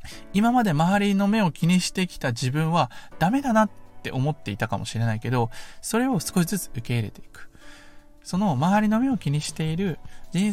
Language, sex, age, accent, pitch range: Japanese, male, 20-39, native, 120-200 Hz